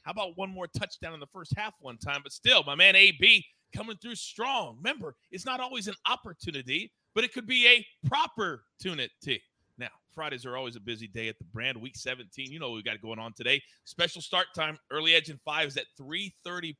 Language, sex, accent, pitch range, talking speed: English, male, American, 120-170 Hz, 220 wpm